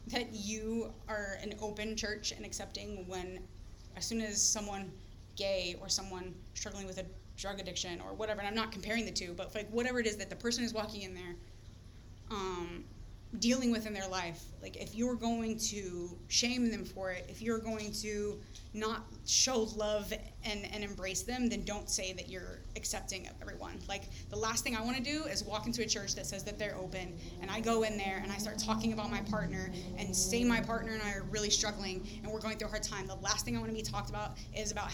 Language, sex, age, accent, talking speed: English, female, 20-39, American, 225 wpm